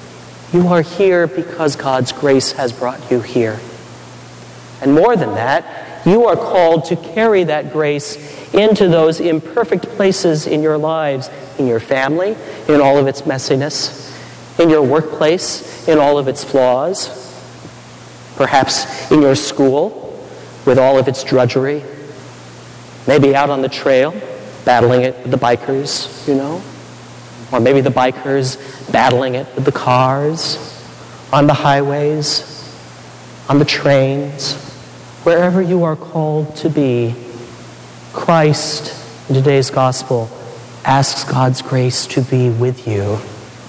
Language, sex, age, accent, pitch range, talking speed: English, male, 40-59, American, 120-150 Hz, 135 wpm